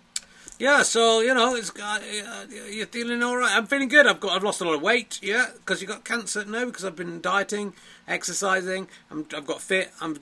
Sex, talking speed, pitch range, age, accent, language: male, 215 wpm, 150-220 Hz, 40-59, British, English